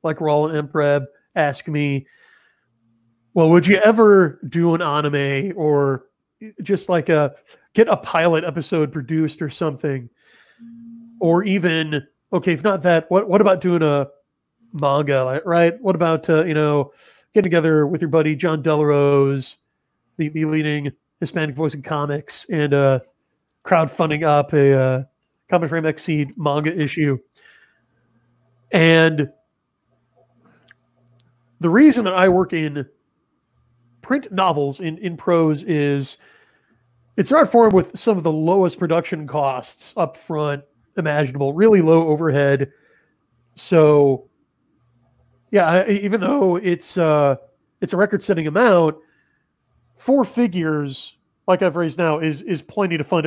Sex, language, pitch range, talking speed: male, English, 145-180 Hz, 130 wpm